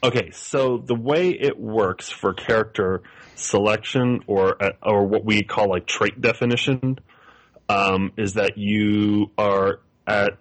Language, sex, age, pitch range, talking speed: English, male, 20-39, 90-105 Hz, 135 wpm